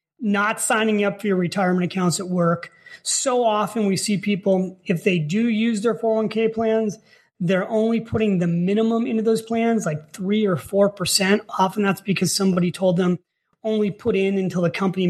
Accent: American